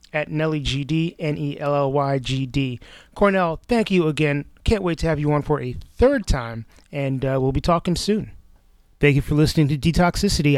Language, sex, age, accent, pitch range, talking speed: English, male, 30-49, American, 130-160 Hz, 170 wpm